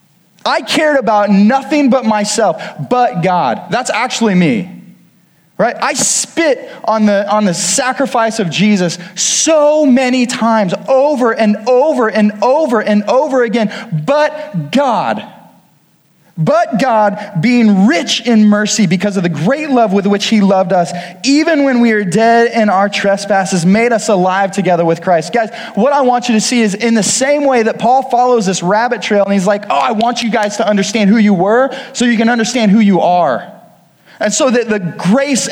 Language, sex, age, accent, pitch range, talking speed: English, male, 20-39, American, 200-265 Hz, 180 wpm